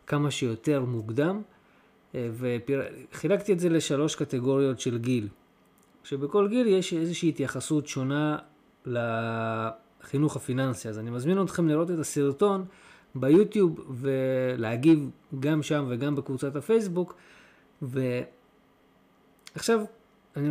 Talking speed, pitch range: 100 wpm, 130-180 Hz